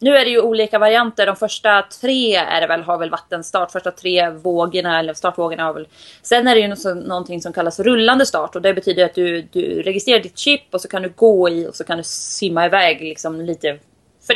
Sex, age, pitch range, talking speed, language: female, 20-39, 175-235 Hz, 240 wpm, Swedish